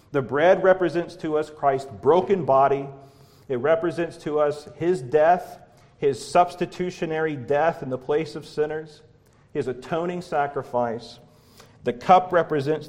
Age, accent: 40-59, American